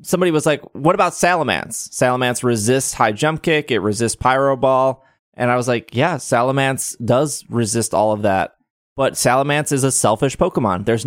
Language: English